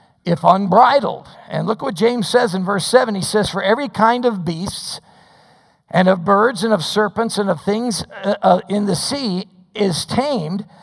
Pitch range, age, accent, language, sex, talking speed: 190-235 Hz, 50-69, American, English, male, 185 wpm